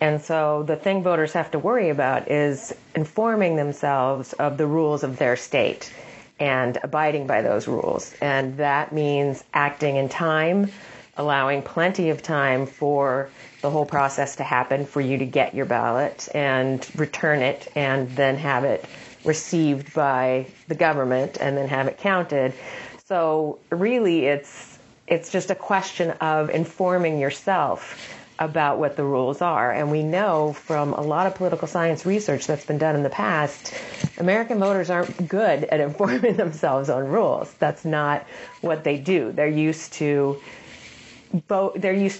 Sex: female